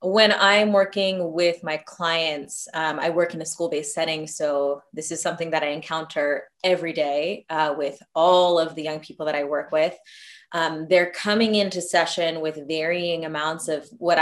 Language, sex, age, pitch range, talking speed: English, female, 20-39, 155-185 Hz, 180 wpm